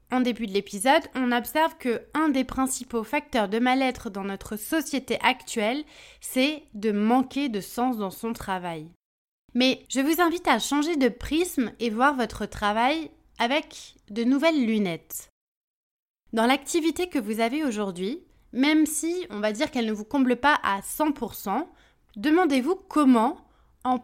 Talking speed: 155 wpm